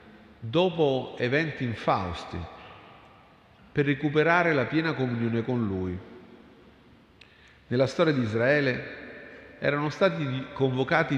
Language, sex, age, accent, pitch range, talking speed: Italian, male, 50-69, native, 110-150 Hz, 90 wpm